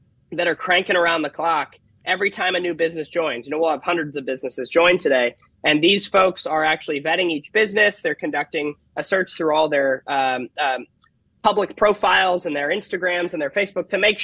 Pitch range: 155-190 Hz